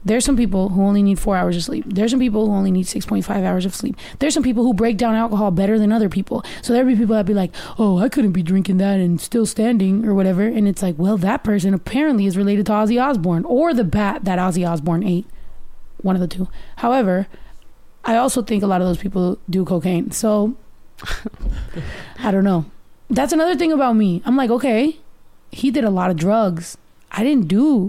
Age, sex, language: 20-39, female, English